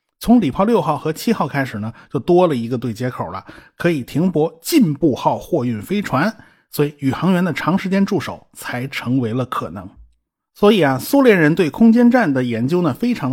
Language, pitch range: Chinese, 125-190 Hz